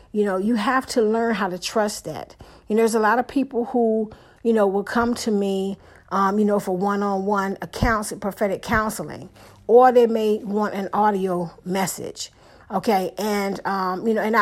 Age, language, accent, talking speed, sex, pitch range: 50-69, English, American, 185 wpm, female, 195-235 Hz